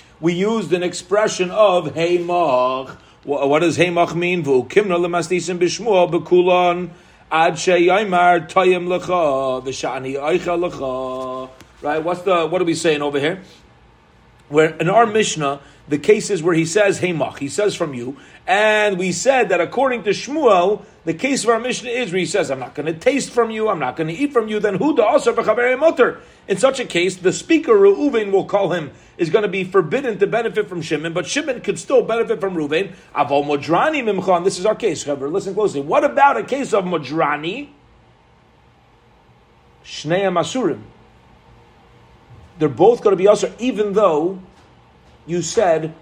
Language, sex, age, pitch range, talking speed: English, male, 40-59, 150-210 Hz, 155 wpm